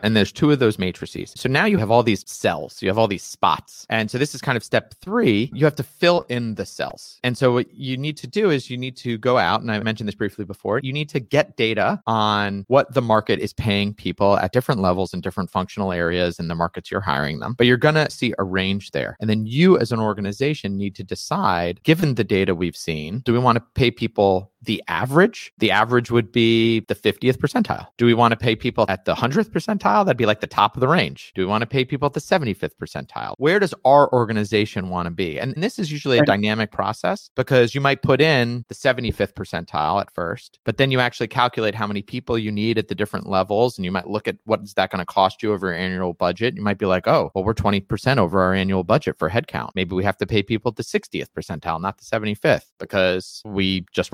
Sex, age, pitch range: male, 30-49, 95-125 Hz